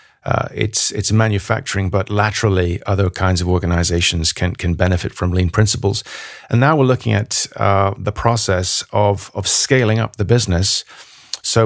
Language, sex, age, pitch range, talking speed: English, male, 40-59, 95-110 Hz, 160 wpm